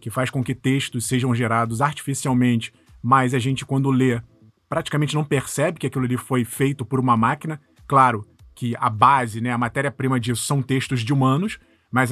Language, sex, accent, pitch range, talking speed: Portuguese, male, Brazilian, 125-180 Hz, 185 wpm